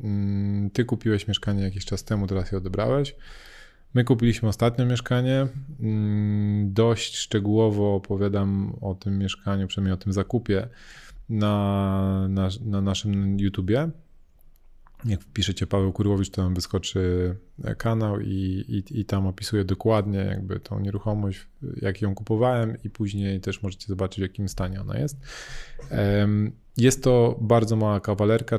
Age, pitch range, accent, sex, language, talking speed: 20-39, 100-115 Hz, native, male, Polish, 130 wpm